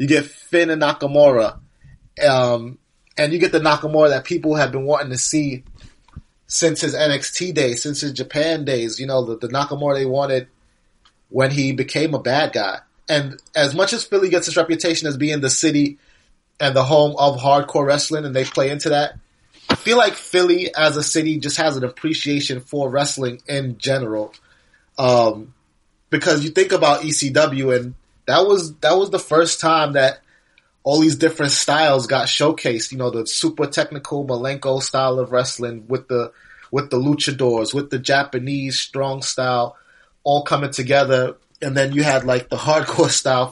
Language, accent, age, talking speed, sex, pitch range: English, American, 30-49, 175 wpm, male, 130-150 Hz